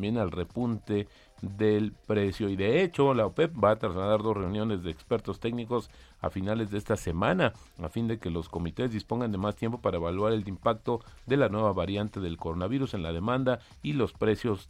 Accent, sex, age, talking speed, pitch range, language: Mexican, male, 40-59, 195 wpm, 95-120 Hz, Spanish